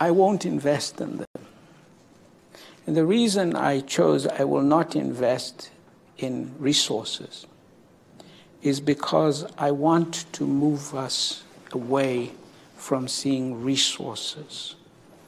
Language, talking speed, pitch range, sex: English, 105 wpm, 135-170 Hz, male